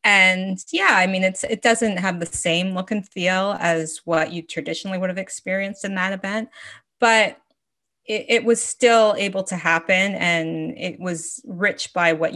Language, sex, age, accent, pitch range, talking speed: English, female, 20-39, American, 165-205 Hz, 180 wpm